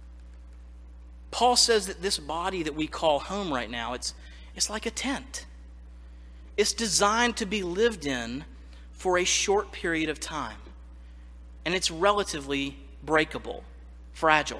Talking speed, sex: 135 wpm, male